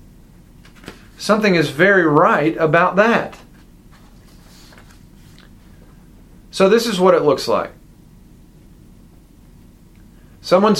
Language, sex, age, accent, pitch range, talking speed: English, male, 40-59, American, 150-190 Hz, 80 wpm